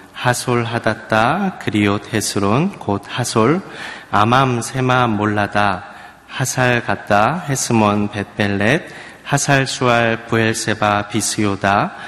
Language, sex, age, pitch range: Korean, male, 30-49, 100-125 Hz